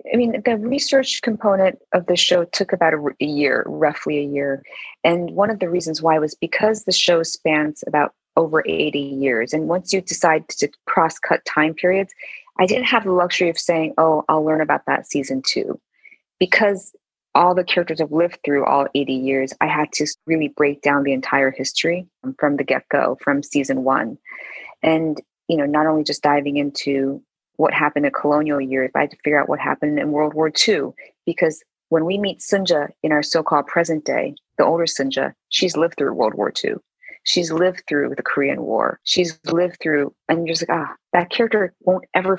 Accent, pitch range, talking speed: American, 145-180 Hz, 200 wpm